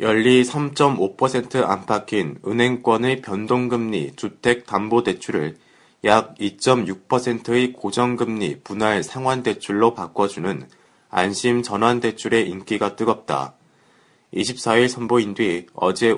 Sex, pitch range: male, 105-125 Hz